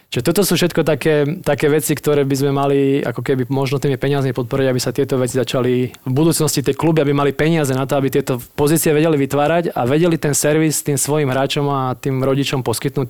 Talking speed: 215 wpm